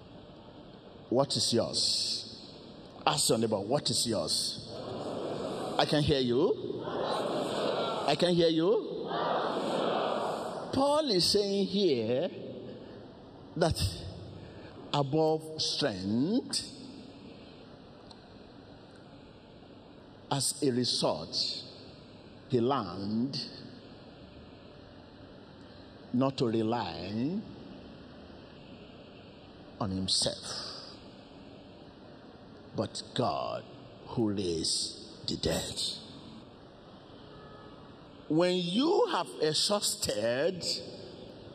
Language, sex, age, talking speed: English, male, 50-69, 65 wpm